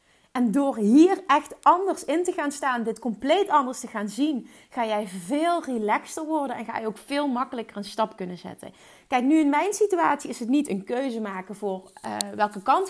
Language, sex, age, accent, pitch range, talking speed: Dutch, female, 30-49, Dutch, 220-290 Hz, 210 wpm